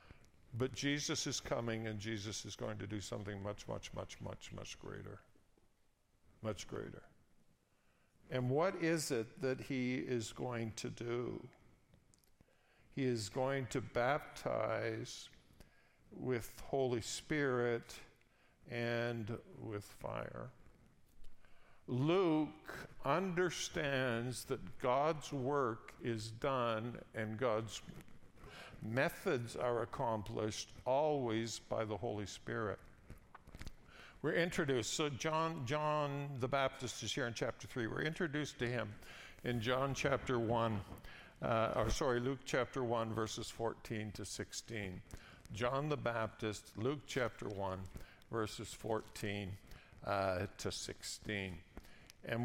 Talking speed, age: 115 wpm, 50-69